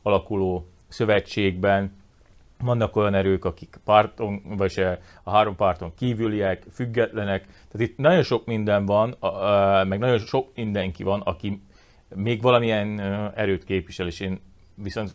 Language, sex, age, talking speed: Hungarian, male, 40-59, 125 wpm